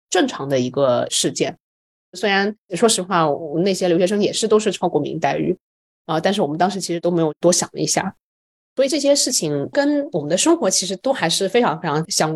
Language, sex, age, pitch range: Chinese, female, 20-39, 160-200 Hz